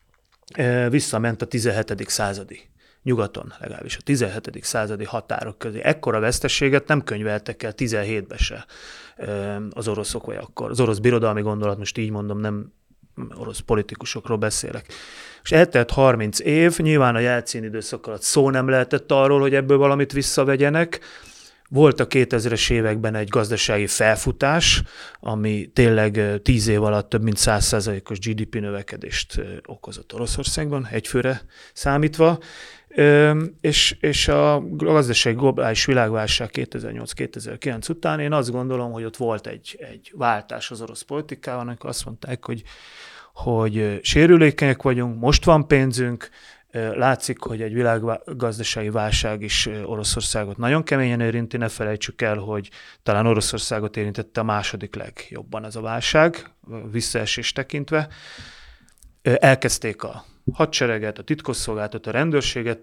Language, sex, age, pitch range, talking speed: Hungarian, male, 30-49, 110-135 Hz, 125 wpm